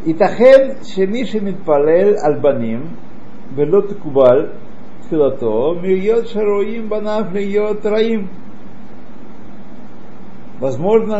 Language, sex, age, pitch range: Russian, male, 60-79, 140-205 Hz